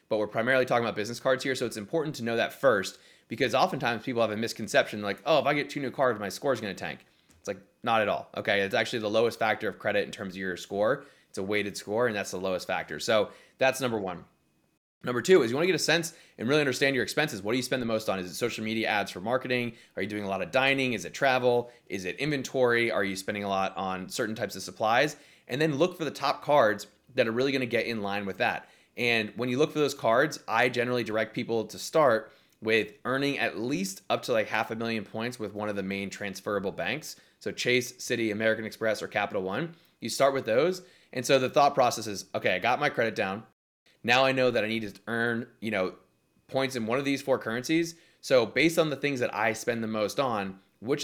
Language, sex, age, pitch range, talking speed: English, male, 20-39, 105-130 Hz, 255 wpm